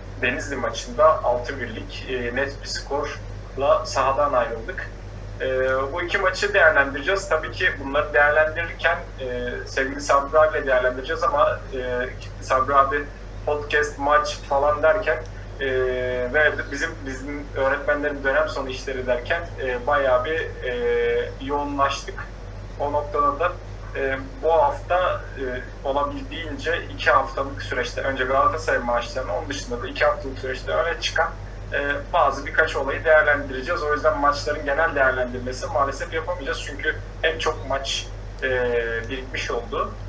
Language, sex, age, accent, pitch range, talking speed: Turkish, male, 30-49, native, 105-145 Hz, 120 wpm